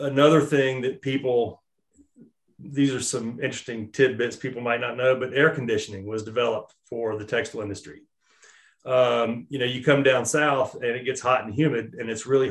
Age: 30-49